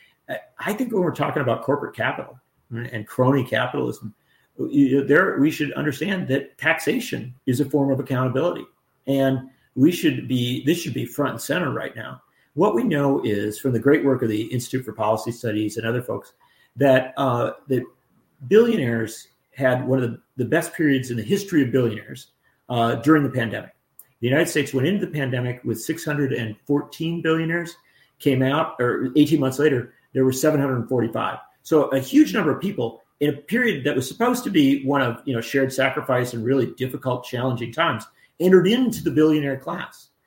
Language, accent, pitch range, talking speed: English, American, 120-160 Hz, 180 wpm